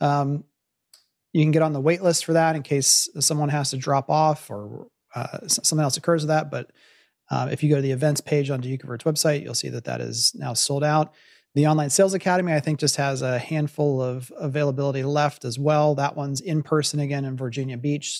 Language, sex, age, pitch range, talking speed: English, male, 30-49, 135-165 Hz, 225 wpm